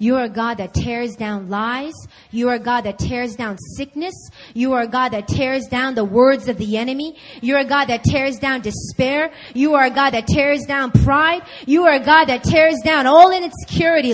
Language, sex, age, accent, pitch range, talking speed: English, female, 30-49, American, 280-370 Hz, 225 wpm